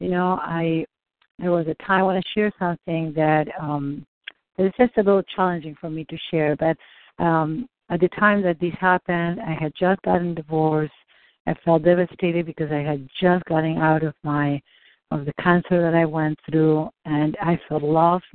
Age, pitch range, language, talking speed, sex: 60-79, 155-185 Hz, English, 195 wpm, female